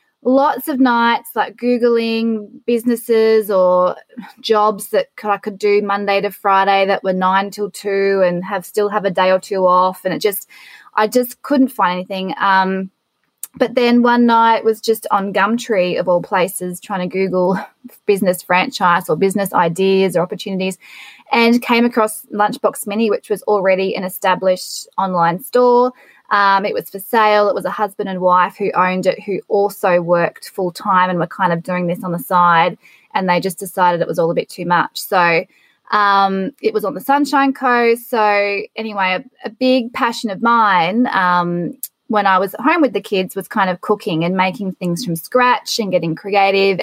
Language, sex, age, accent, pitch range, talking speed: English, female, 20-39, Australian, 185-235 Hz, 185 wpm